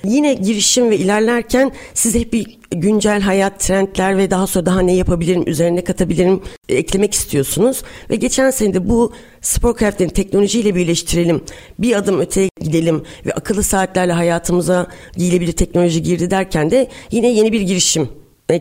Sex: female